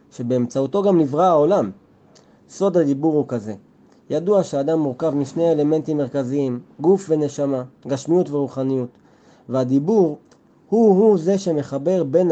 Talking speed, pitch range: 110 wpm, 130-165 Hz